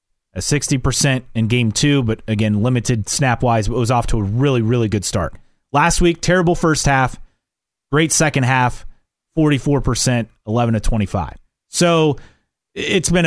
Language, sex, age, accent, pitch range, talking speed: English, male, 30-49, American, 120-155 Hz, 145 wpm